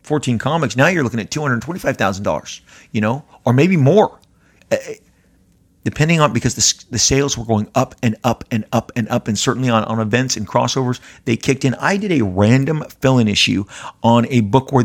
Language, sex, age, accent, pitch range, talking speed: English, male, 40-59, American, 100-130 Hz, 210 wpm